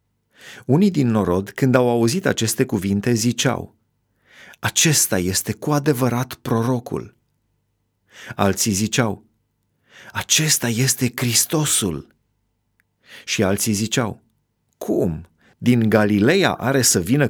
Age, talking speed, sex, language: 30-49, 95 wpm, male, Romanian